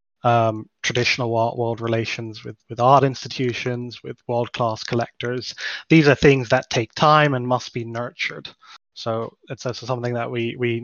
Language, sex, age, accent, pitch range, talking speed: English, male, 20-39, British, 115-135 Hz, 160 wpm